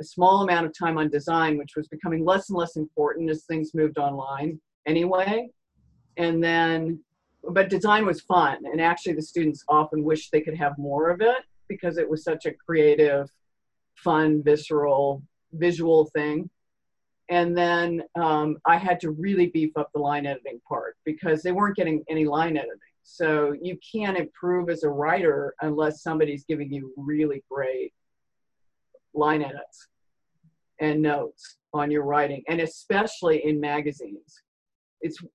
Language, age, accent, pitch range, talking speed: English, 50-69, American, 150-180 Hz, 155 wpm